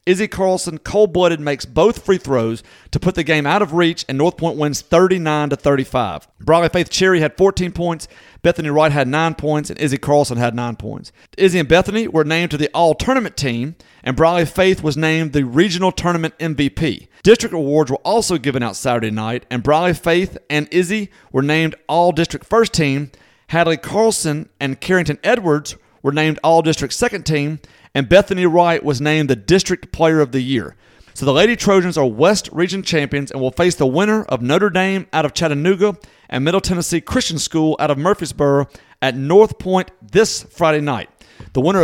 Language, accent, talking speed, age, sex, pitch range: English, American, 185 wpm, 40-59, male, 140-180 Hz